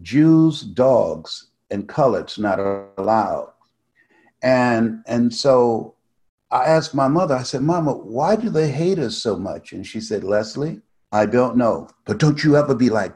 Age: 60-79